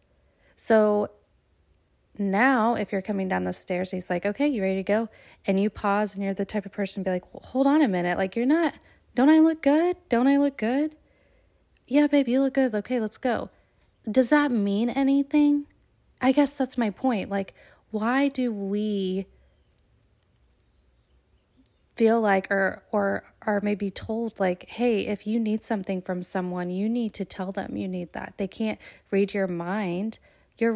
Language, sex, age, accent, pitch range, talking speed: English, female, 20-39, American, 190-230 Hz, 180 wpm